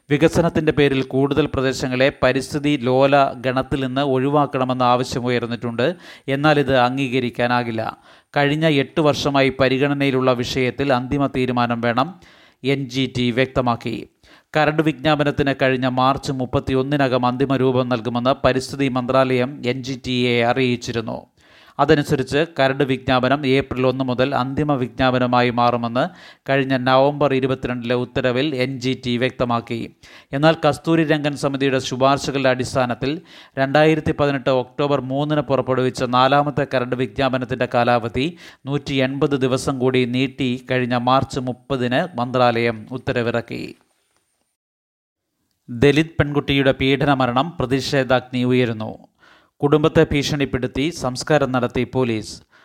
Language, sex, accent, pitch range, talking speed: Malayalam, male, native, 125-140 Hz, 100 wpm